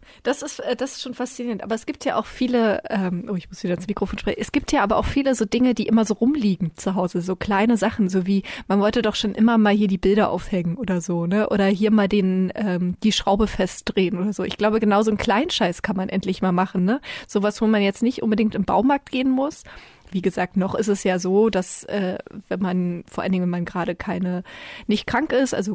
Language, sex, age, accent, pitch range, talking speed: German, female, 20-39, German, 185-215 Hz, 245 wpm